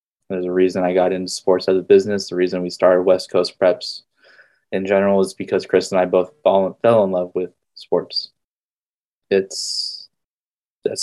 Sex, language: male, English